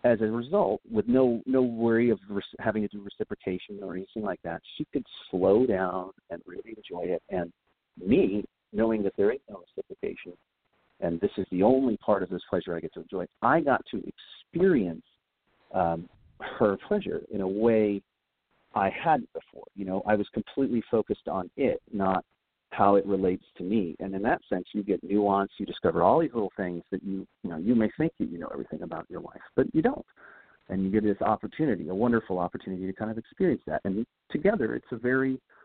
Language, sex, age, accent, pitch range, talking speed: English, male, 50-69, American, 95-120 Hz, 200 wpm